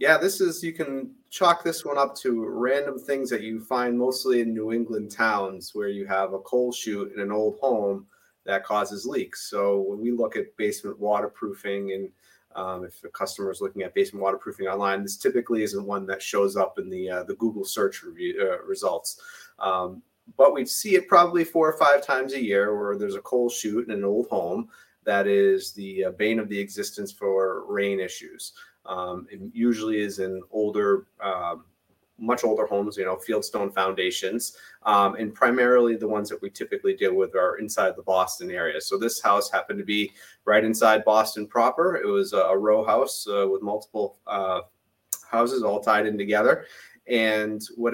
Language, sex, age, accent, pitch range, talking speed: English, male, 30-49, American, 100-140 Hz, 195 wpm